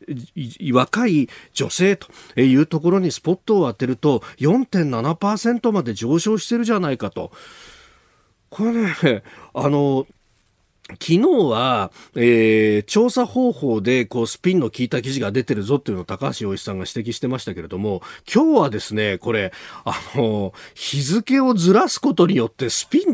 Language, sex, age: Japanese, male, 40-59